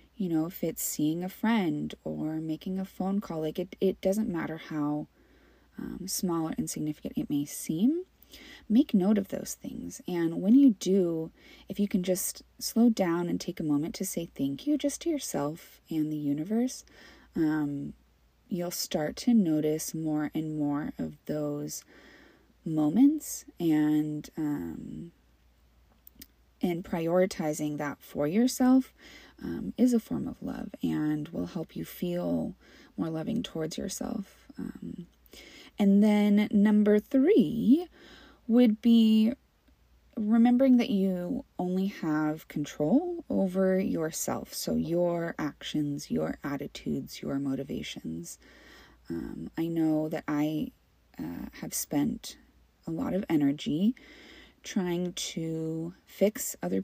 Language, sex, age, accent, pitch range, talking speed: English, female, 20-39, American, 155-230 Hz, 130 wpm